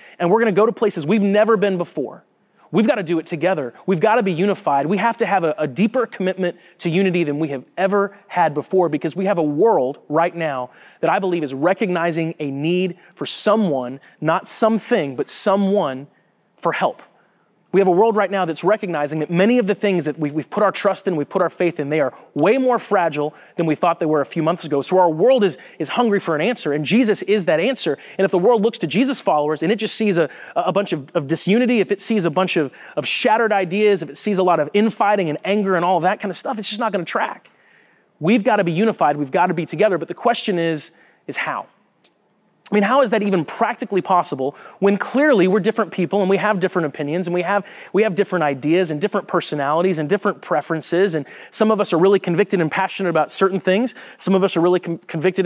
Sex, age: male, 30-49